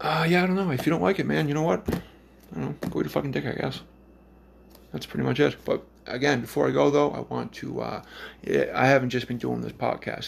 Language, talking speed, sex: English, 245 wpm, male